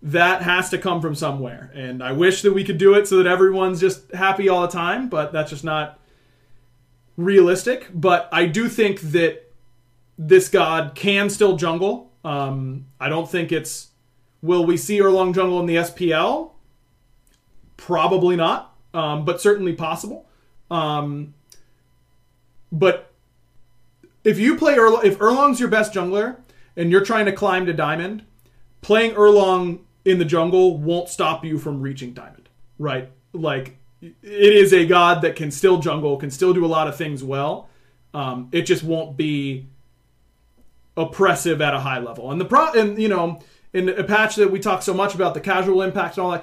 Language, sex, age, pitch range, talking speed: English, male, 30-49, 135-190 Hz, 175 wpm